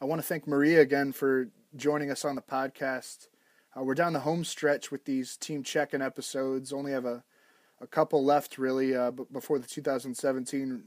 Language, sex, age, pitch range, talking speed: English, male, 20-39, 130-145 Hz, 195 wpm